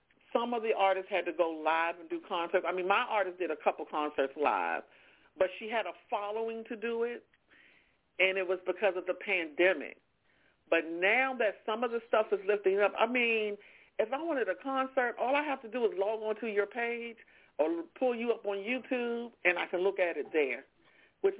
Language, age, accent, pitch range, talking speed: English, 50-69, American, 180-225 Hz, 215 wpm